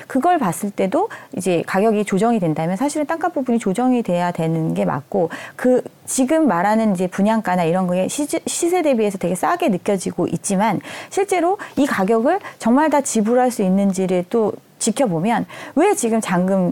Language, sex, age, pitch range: Korean, female, 40-59, 190-285 Hz